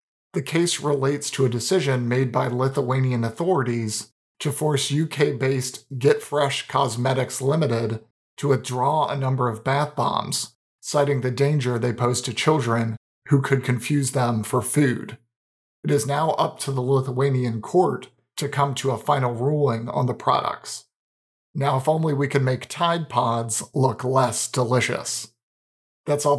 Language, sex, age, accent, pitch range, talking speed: English, male, 40-59, American, 125-145 Hz, 150 wpm